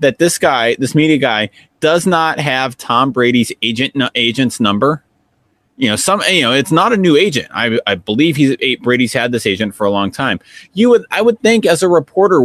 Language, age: English, 30-49